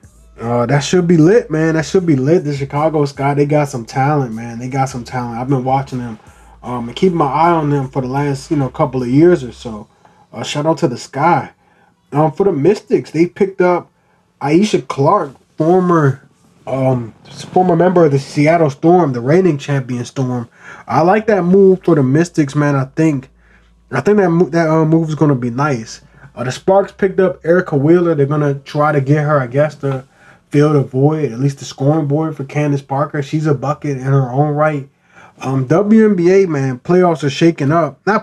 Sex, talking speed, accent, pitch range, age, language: male, 210 wpm, American, 135-175 Hz, 20-39, English